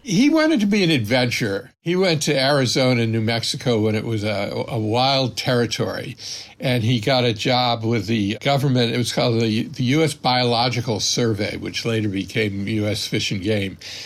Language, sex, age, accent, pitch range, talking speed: English, male, 60-79, American, 110-145 Hz, 180 wpm